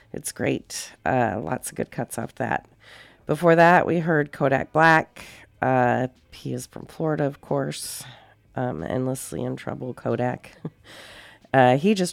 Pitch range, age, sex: 115-155 Hz, 40-59, female